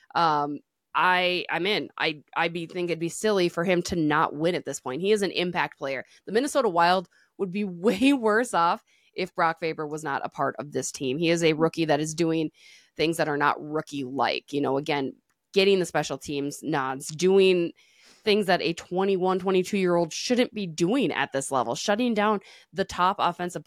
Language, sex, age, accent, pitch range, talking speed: English, female, 20-39, American, 150-190 Hz, 210 wpm